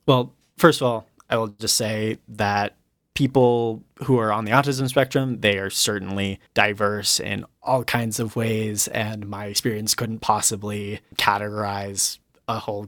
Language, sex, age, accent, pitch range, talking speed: English, male, 20-39, American, 105-125 Hz, 155 wpm